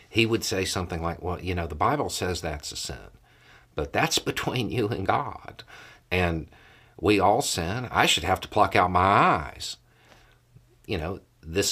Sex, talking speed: male, 180 wpm